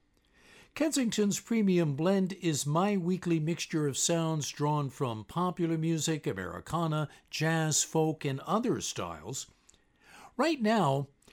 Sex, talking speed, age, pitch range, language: male, 110 wpm, 60-79, 135-180 Hz, English